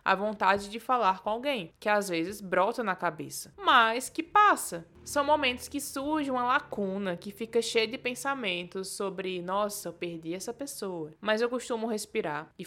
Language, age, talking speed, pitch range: Portuguese, 20-39, 175 wpm, 200-260 Hz